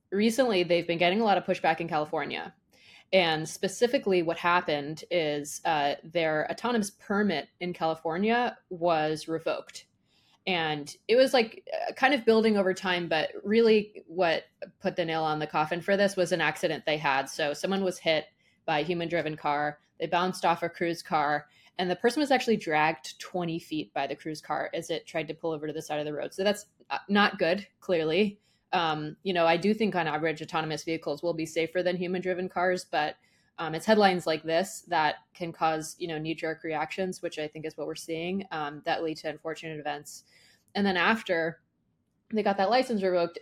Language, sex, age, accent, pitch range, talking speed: English, female, 20-39, American, 155-190 Hz, 200 wpm